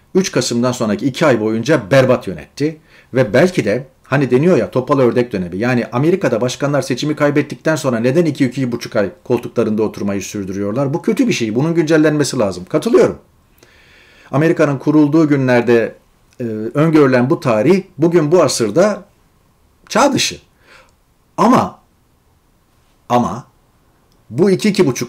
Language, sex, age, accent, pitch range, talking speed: Turkish, male, 40-59, native, 120-155 Hz, 125 wpm